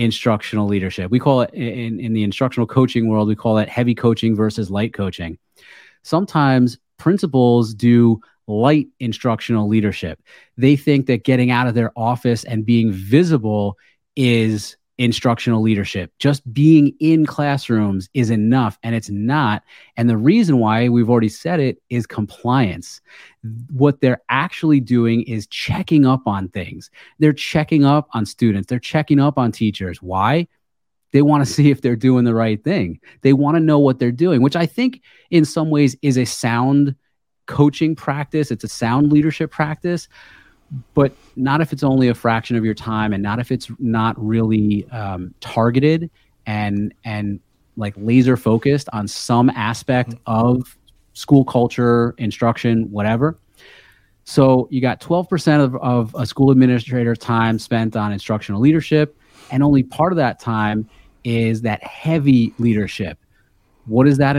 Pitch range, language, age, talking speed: 110-140 Hz, English, 30-49, 160 wpm